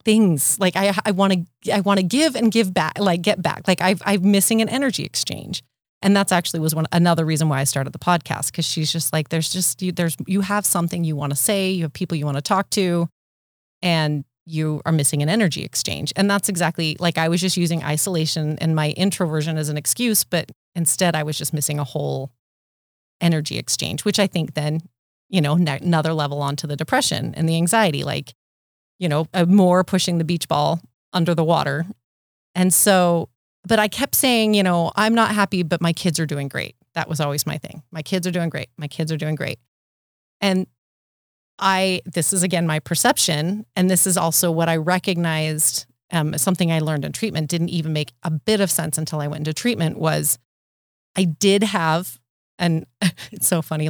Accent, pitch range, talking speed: American, 155-185 Hz, 210 wpm